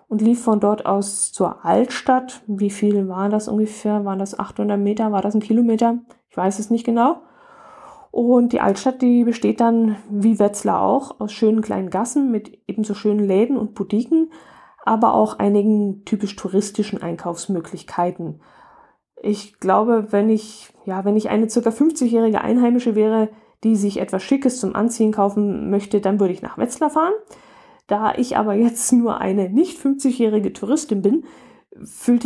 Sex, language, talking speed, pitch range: female, German, 160 wpm, 200-240 Hz